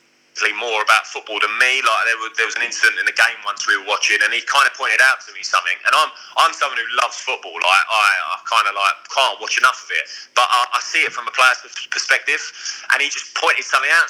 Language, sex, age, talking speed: English, male, 20-39, 260 wpm